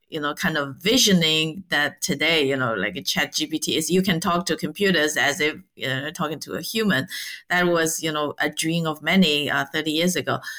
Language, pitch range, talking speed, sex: English, 150-190 Hz, 220 wpm, female